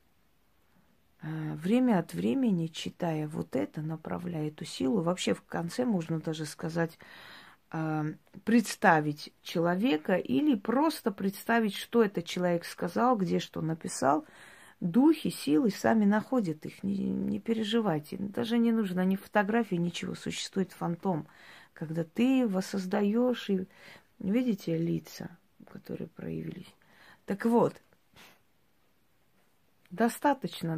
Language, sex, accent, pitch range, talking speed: Russian, female, native, 155-210 Hz, 105 wpm